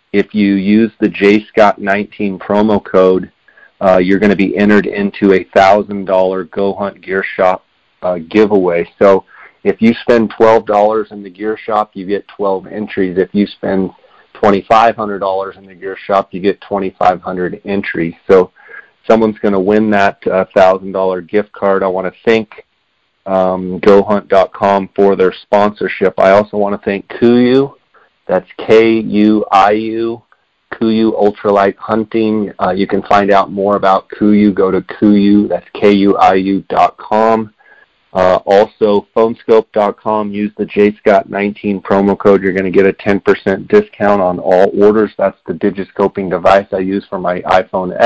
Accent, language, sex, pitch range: American, English, male, 95-105 Hz